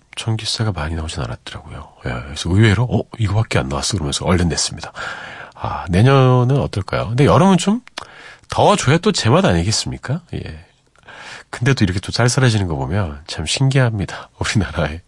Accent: native